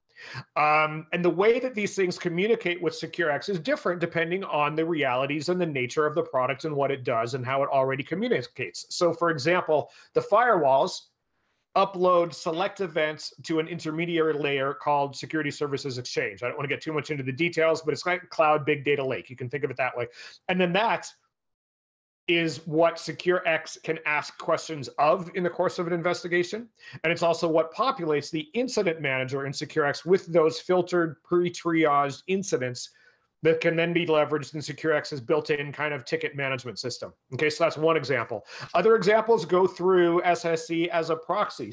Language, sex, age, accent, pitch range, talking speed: English, male, 40-59, American, 150-175 Hz, 185 wpm